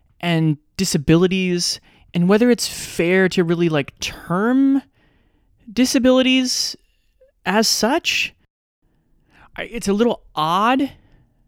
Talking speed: 90 wpm